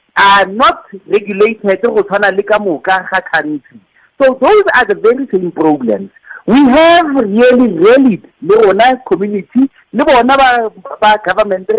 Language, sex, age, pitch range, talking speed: English, male, 50-69, 200-295 Hz, 90 wpm